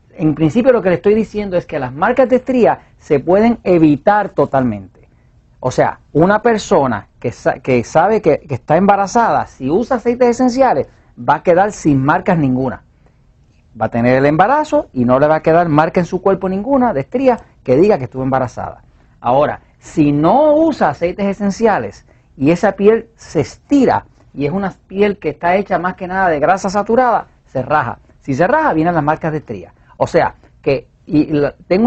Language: Spanish